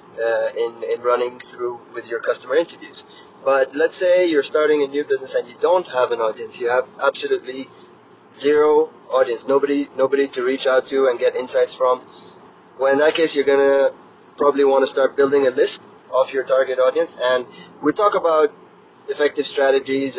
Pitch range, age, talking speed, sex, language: 130-205 Hz, 20-39, 180 wpm, male, English